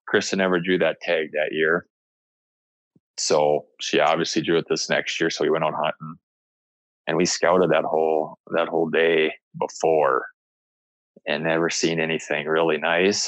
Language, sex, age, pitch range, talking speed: English, male, 20-39, 85-120 Hz, 160 wpm